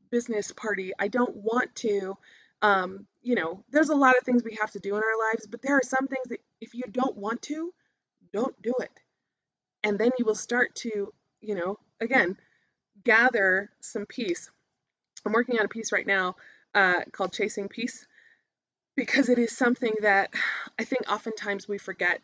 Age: 20-39